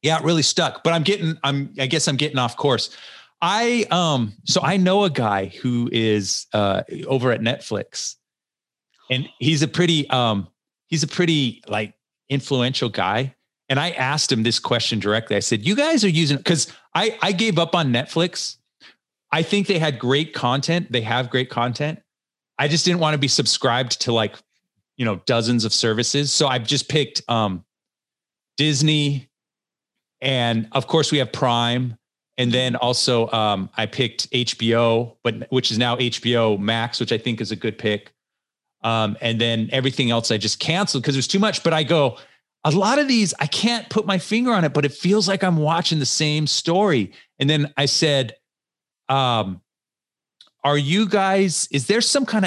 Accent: American